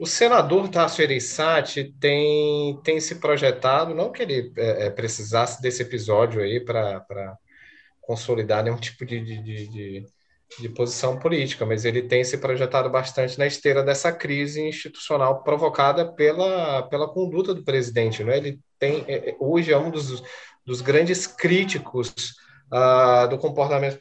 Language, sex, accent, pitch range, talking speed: Portuguese, male, Brazilian, 120-150 Hz, 140 wpm